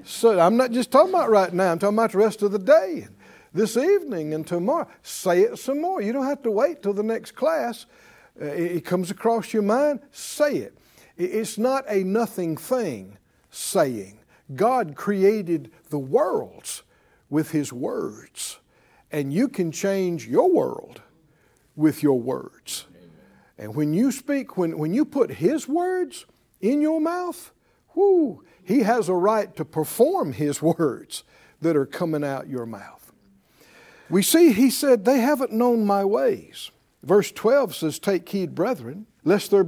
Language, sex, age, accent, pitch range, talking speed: English, male, 60-79, American, 155-250 Hz, 160 wpm